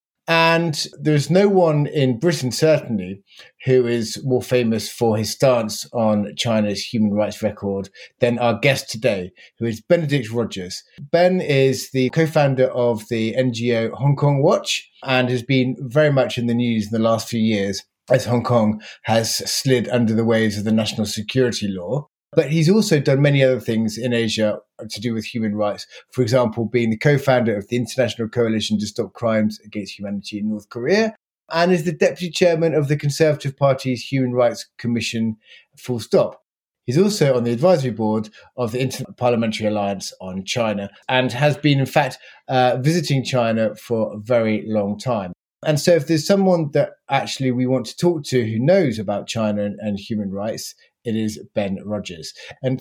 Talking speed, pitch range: 180 wpm, 110-140 Hz